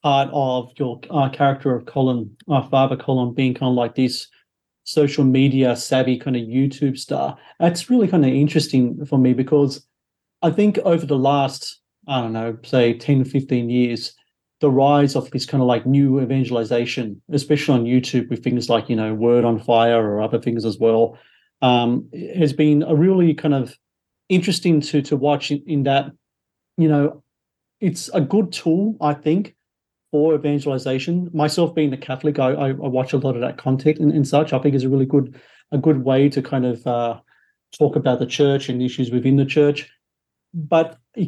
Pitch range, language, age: 130-150 Hz, English, 40-59